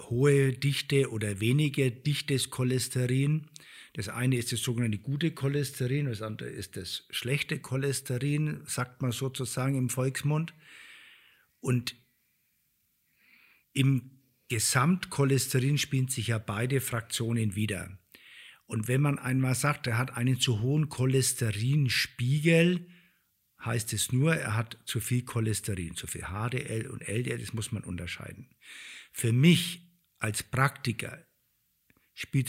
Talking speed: 120 wpm